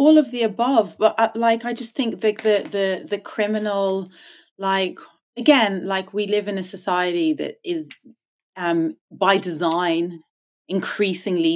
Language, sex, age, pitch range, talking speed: English, female, 30-49, 175-260 Hz, 150 wpm